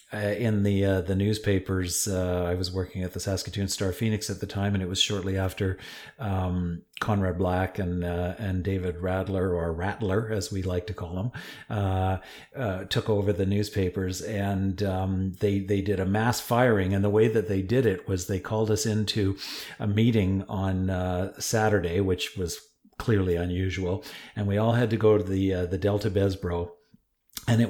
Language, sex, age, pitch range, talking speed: English, male, 40-59, 95-110 Hz, 190 wpm